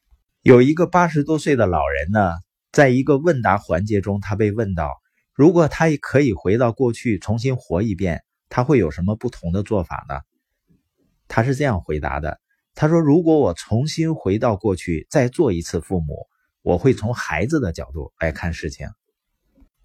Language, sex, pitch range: Chinese, male, 85-140 Hz